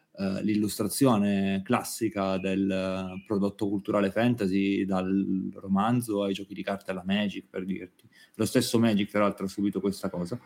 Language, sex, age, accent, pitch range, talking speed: Italian, male, 30-49, native, 100-120 Hz, 150 wpm